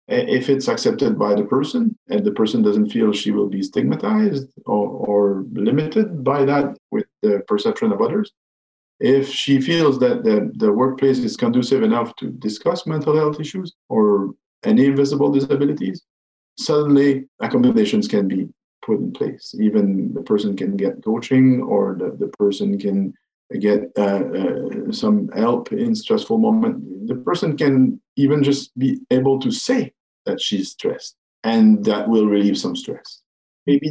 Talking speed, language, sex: 160 wpm, English, male